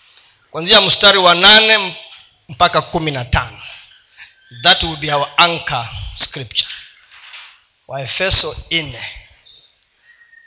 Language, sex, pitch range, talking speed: Swahili, male, 165-215 Hz, 85 wpm